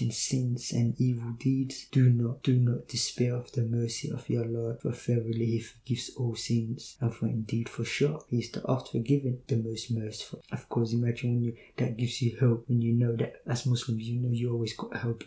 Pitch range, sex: 120-135 Hz, male